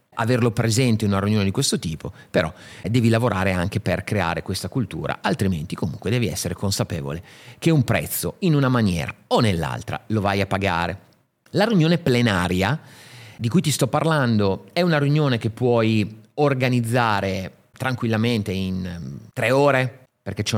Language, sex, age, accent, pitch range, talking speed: Italian, male, 30-49, native, 105-130 Hz, 155 wpm